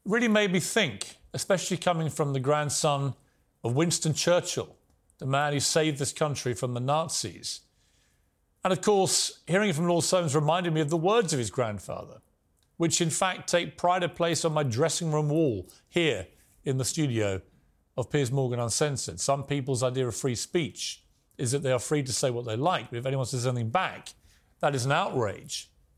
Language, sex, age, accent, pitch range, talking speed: English, male, 40-59, British, 130-170 Hz, 190 wpm